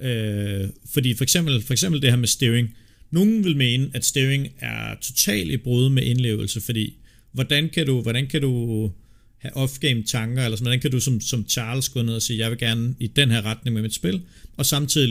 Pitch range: 110-130 Hz